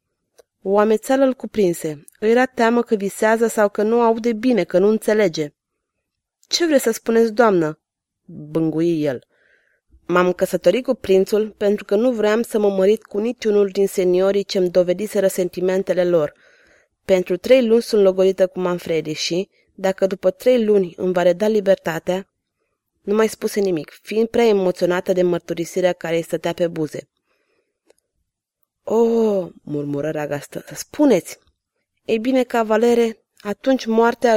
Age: 20-39